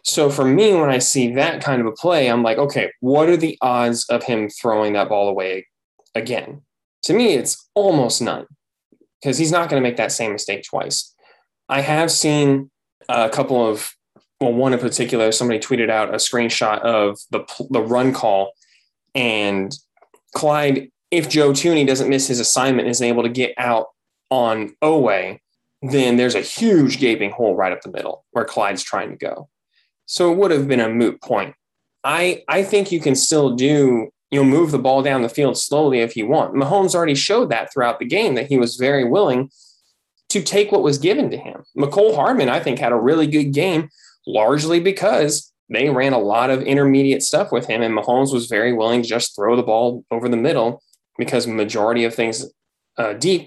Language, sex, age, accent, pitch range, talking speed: English, male, 10-29, American, 115-145 Hz, 200 wpm